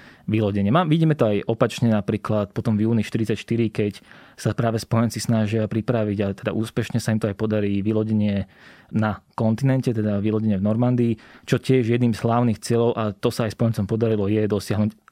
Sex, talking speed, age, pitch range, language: male, 175 wpm, 20-39, 105-115 Hz, Slovak